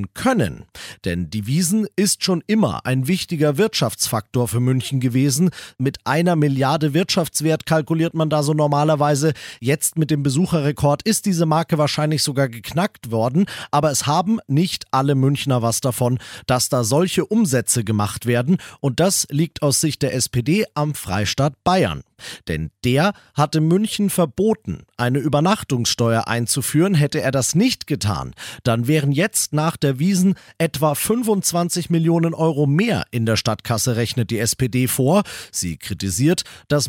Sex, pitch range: male, 125-170 Hz